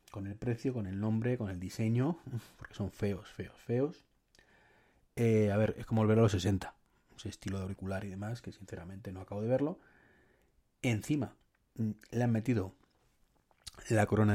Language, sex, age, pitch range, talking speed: Spanish, male, 30-49, 100-120 Hz, 170 wpm